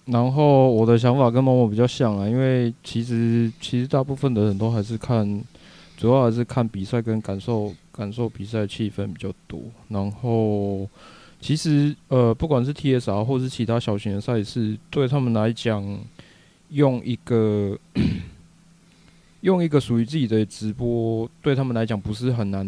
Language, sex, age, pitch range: Chinese, male, 20-39, 105-125 Hz